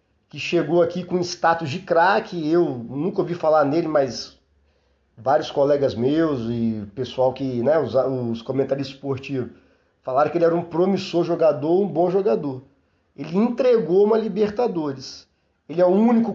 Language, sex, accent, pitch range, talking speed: Portuguese, male, Brazilian, 130-180 Hz, 155 wpm